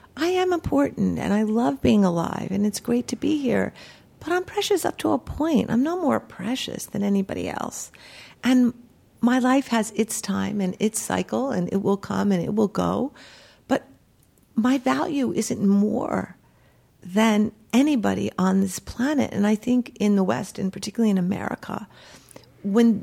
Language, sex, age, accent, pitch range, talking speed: English, female, 50-69, American, 195-255 Hz, 170 wpm